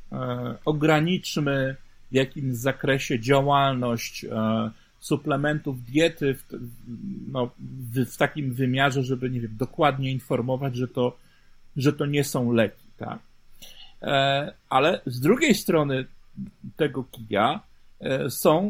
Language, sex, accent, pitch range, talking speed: Polish, male, native, 120-145 Hz, 90 wpm